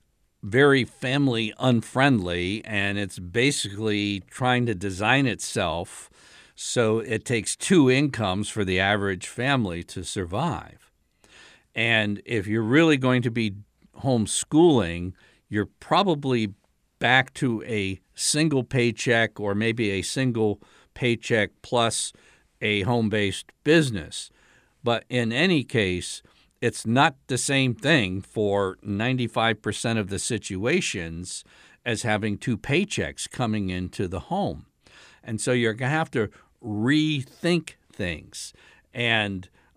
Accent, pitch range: American, 100-130 Hz